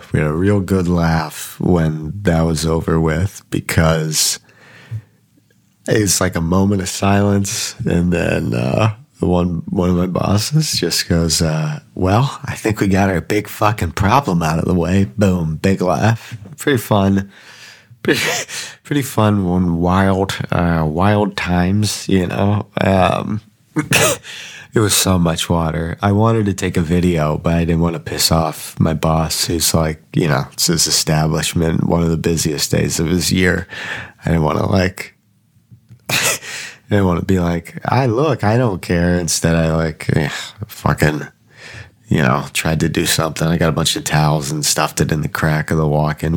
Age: 30-49